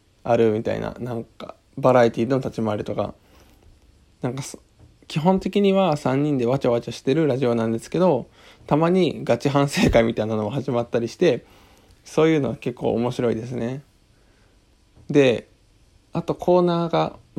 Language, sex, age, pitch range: Japanese, male, 20-39, 110-145 Hz